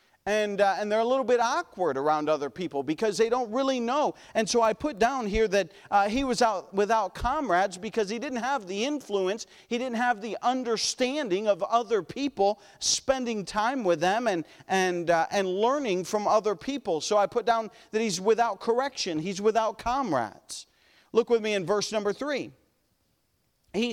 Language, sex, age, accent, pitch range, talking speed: English, male, 40-59, American, 195-240 Hz, 185 wpm